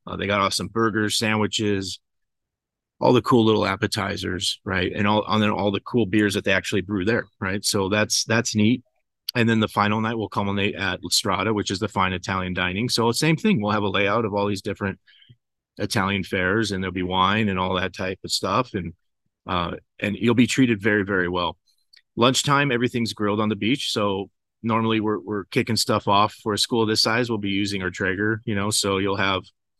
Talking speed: 215 wpm